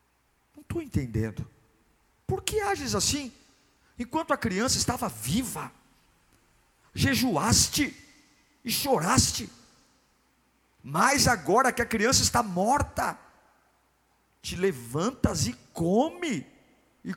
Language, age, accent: Portuguese, 50-69, Brazilian